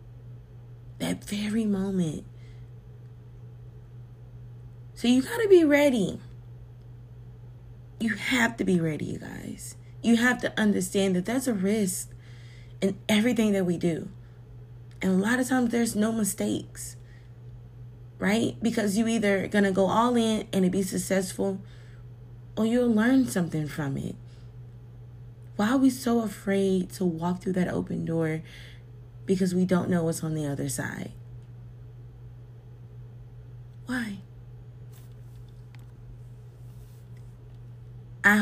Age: 20-39